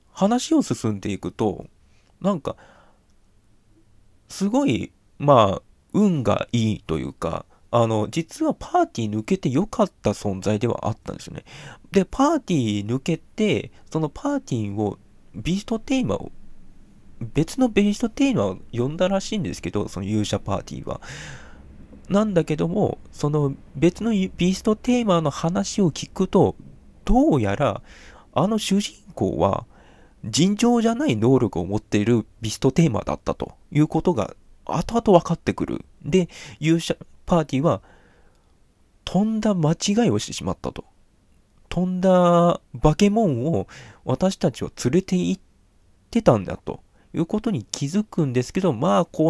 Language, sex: Japanese, male